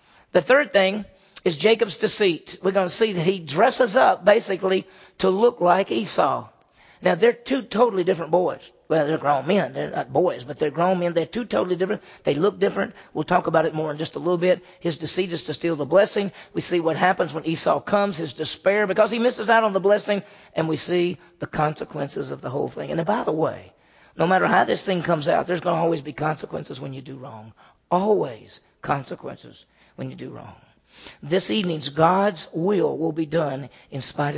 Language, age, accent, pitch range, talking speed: English, 40-59, American, 155-200 Hz, 215 wpm